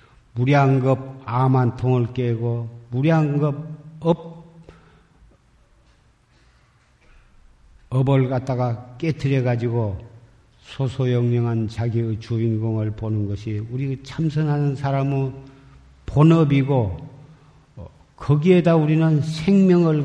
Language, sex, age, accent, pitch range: Korean, male, 50-69, native, 115-140 Hz